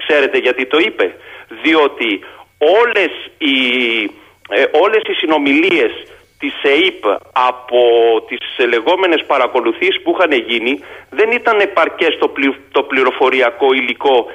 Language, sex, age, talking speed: Greek, male, 40-59, 110 wpm